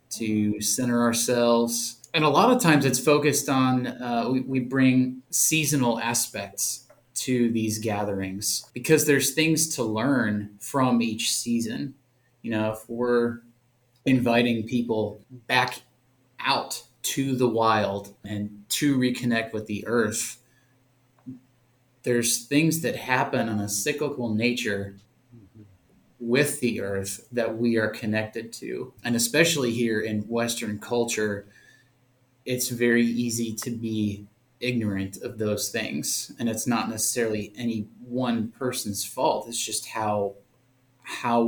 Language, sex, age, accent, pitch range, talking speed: English, male, 30-49, American, 110-125 Hz, 125 wpm